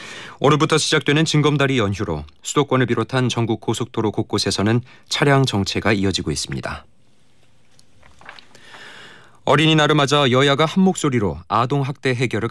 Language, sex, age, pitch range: Korean, male, 40-59, 100-130 Hz